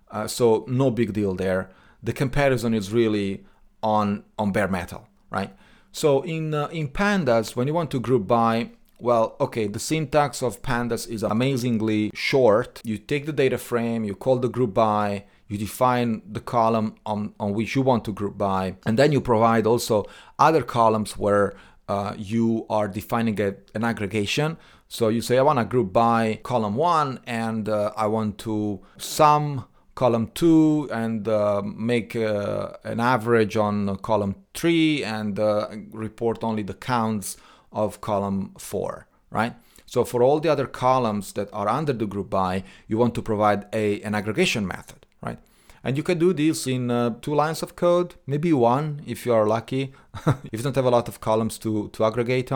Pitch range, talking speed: 105-130 Hz, 180 wpm